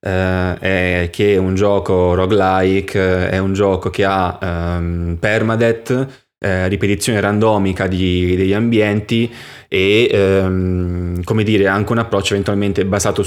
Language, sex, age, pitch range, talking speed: Italian, male, 20-39, 95-105 Hz, 130 wpm